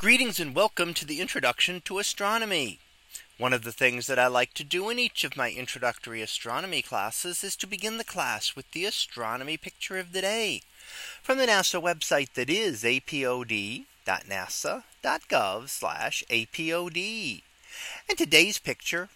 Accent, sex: American, male